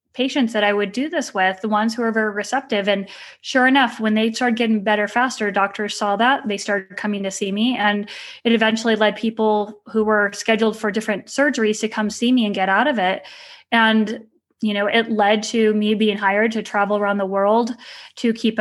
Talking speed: 215 wpm